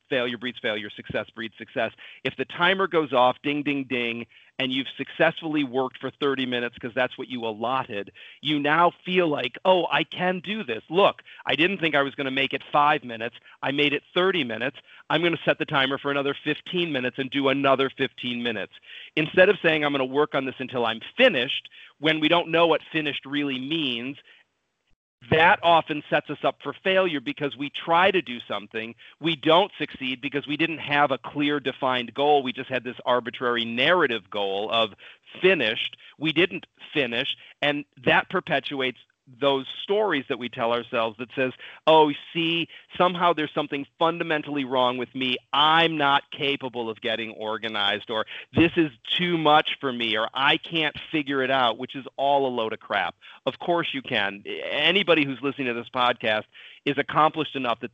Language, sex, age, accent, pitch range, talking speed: English, male, 40-59, American, 125-155 Hz, 190 wpm